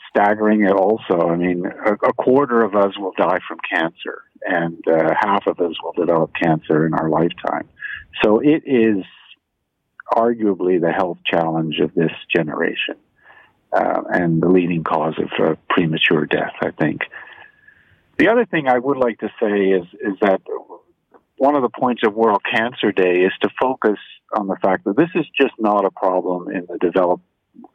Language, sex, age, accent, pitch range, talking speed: English, male, 50-69, American, 90-115 Hz, 175 wpm